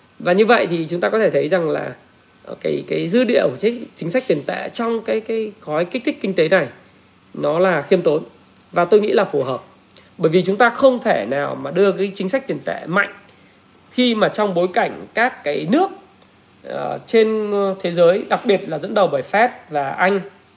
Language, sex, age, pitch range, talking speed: Vietnamese, male, 20-39, 160-225 Hz, 215 wpm